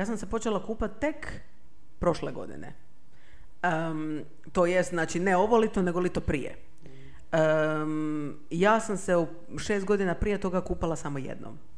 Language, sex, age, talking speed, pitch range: Croatian, female, 40-59, 160 wpm, 155-205 Hz